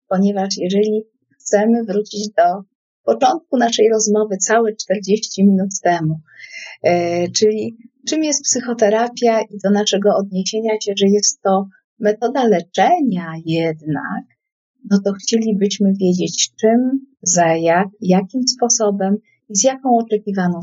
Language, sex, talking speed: Polish, female, 115 wpm